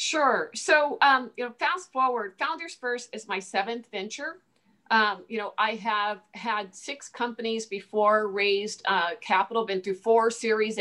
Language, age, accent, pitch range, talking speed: English, 50-69, American, 205-245 Hz, 160 wpm